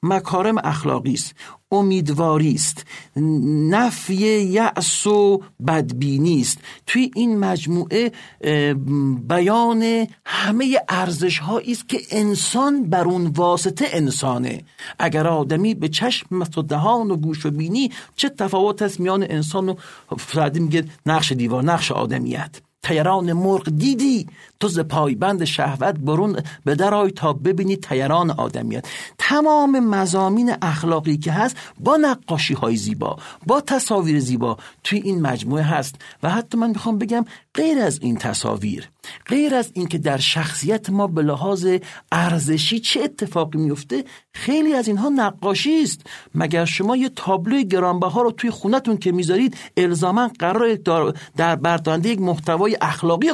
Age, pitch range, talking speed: 50-69, 155-220 Hz, 130 wpm